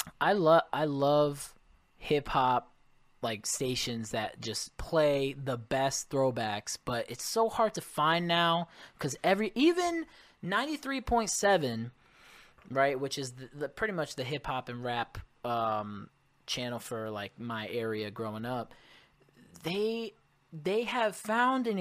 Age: 20-39